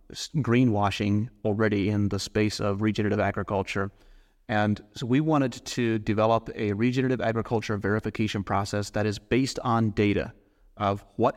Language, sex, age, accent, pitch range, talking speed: English, male, 30-49, American, 105-130 Hz, 135 wpm